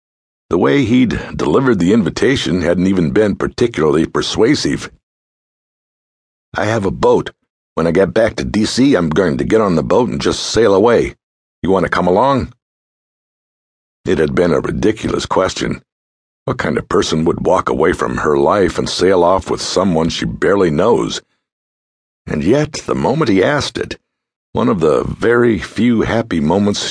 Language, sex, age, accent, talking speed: English, male, 60-79, American, 165 wpm